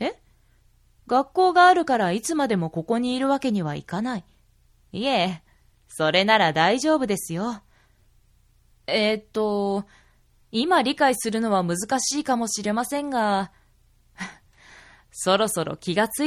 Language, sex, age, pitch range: Japanese, female, 20-39, 185-260 Hz